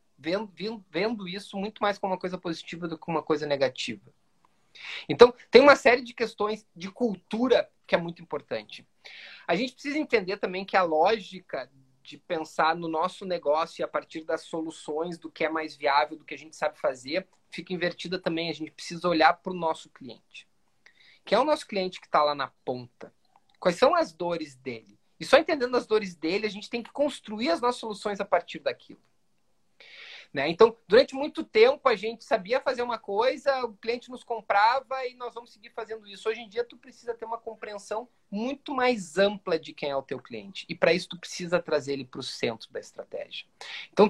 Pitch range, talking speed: 165-230 Hz, 200 wpm